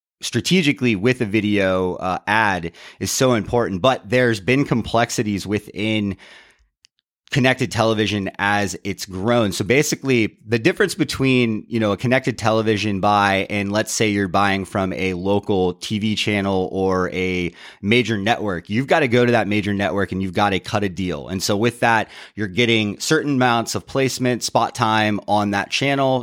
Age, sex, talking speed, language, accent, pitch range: 30-49, male, 170 wpm, English, American, 100-120 Hz